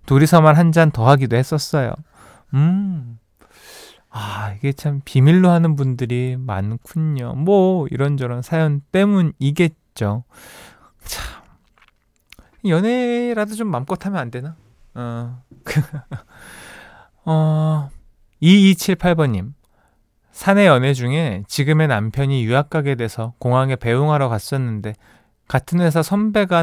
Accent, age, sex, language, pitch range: native, 20-39, male, Korean, 120-160 Hz